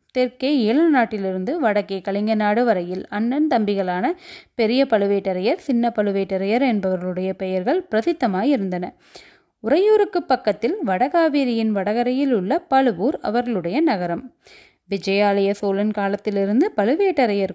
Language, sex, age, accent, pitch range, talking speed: Tamil, female, 20-39, native, 200-290 Hz, 95 wpm